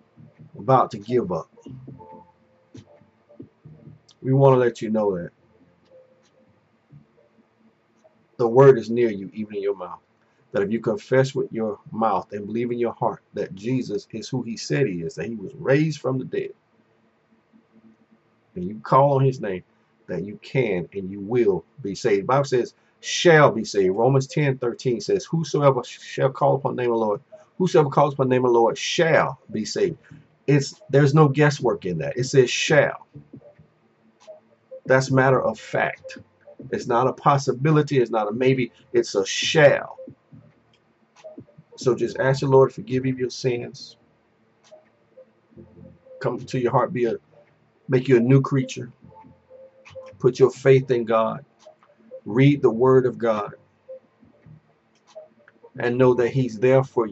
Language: English